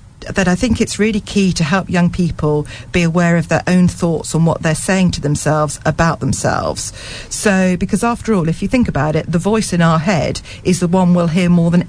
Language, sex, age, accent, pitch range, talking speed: English, female, 50-69, British, 155-185 Hz, 225 wpm